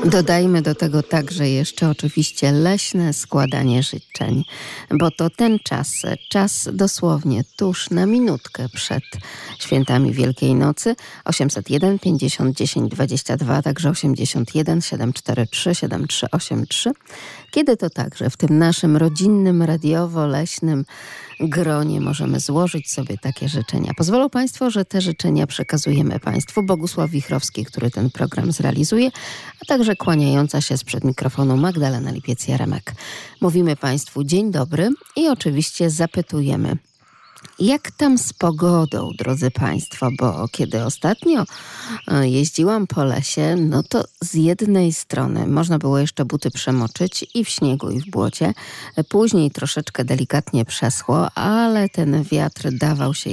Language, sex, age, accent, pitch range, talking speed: Polish, female, 40-59, native, 135-175 Hz, 130 wpm